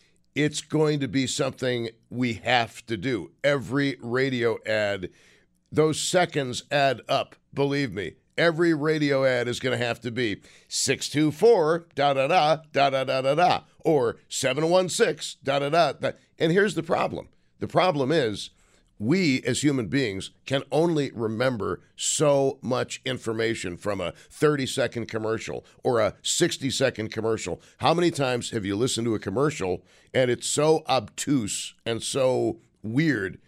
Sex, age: male, 50-69